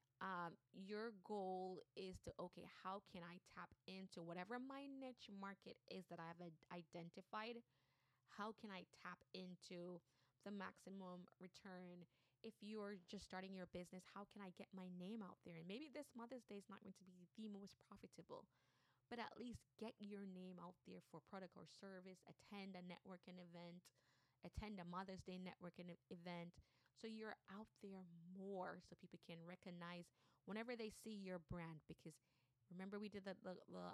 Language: English